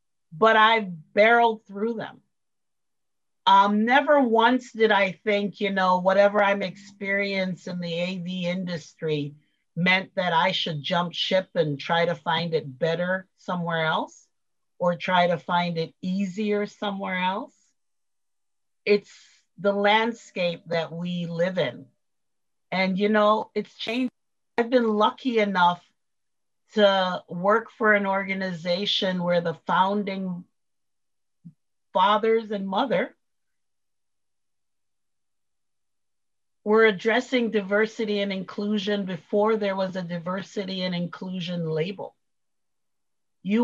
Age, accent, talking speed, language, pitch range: 40-59, American, 115 wpm, English, 175-210 Hz